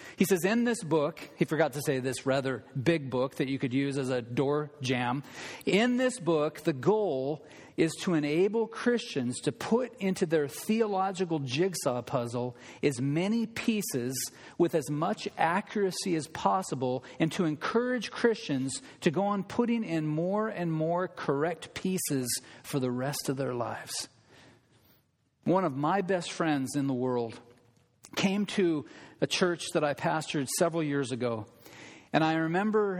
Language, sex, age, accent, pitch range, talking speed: English, male, 40-59, American, 135-180 Hz, 160 wpm